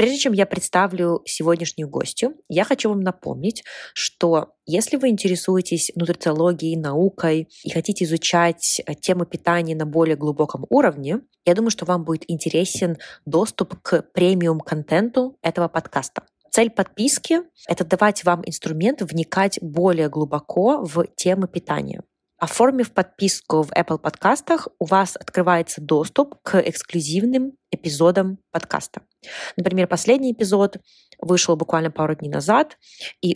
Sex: female